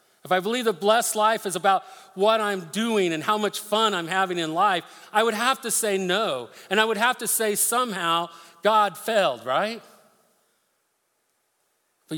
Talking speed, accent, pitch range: 175 wpm, American, 175-225 Hz